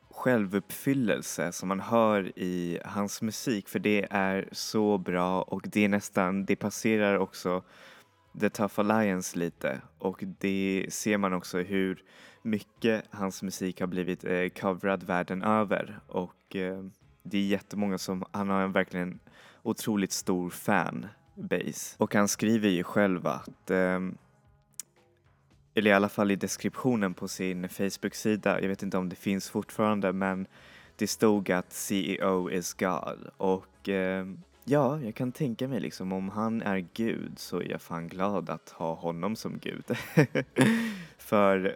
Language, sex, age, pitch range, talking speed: Swedish, male, 20-39, 90-105 Hz, 145 wpm